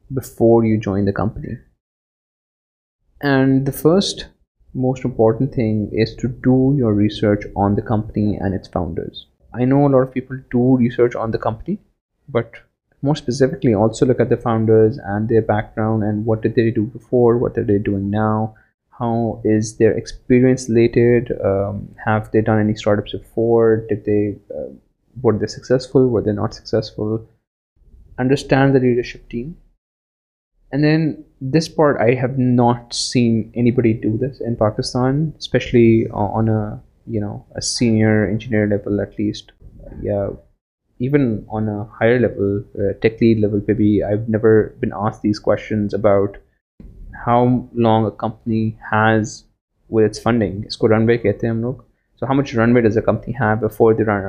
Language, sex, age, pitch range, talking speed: Urdu, male, 20-39, 105-125 Hz, 160 wpm